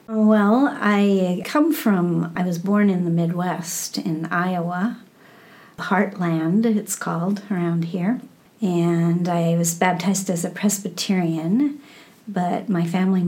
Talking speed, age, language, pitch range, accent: 120 wpm, 50-69, English, 170-210 Hz, American